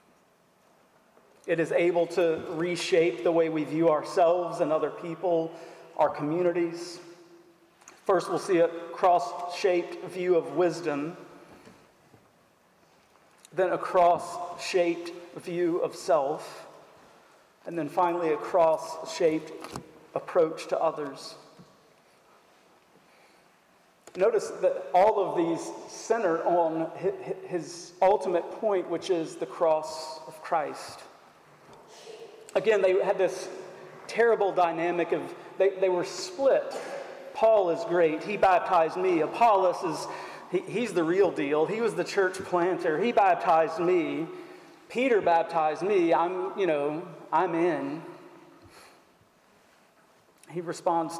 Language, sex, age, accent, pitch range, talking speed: English, male, 40-59, American, 165-190 Hz, 110 wpm